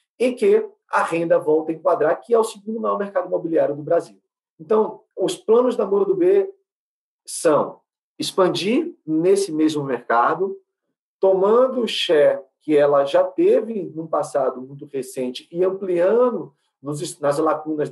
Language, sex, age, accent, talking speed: Portuguese, male, 40-59, Brazilian, 145 wpm